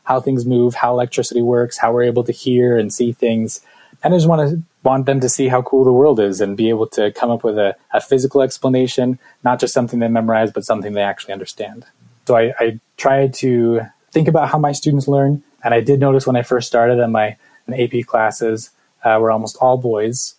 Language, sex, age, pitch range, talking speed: English, male, 20-39, 115-130 Hz, 230 wpm